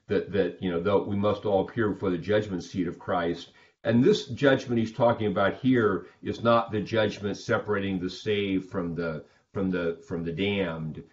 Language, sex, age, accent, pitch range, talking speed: English, male, 40-59, American, 90-110 Hz, 195 wpm